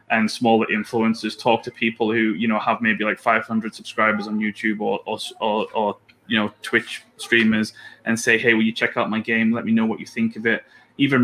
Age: 20-39